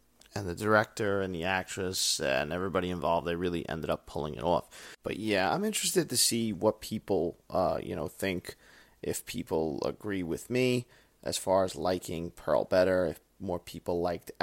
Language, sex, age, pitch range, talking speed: English, male, 30-49, 95-125 Hz, 180 wpm